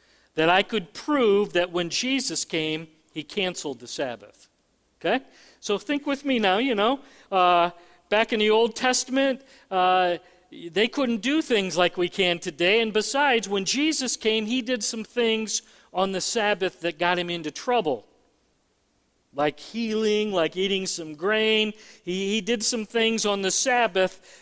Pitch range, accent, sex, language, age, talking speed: 175-235 Hz, American, male, English, 40-59, 160 wpm